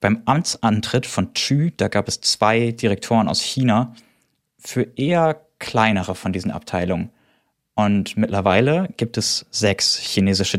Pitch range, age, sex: 100-120 Hz, 20-39, male